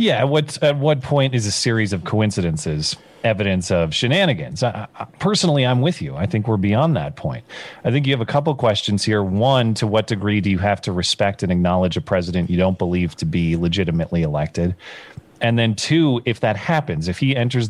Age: 30-49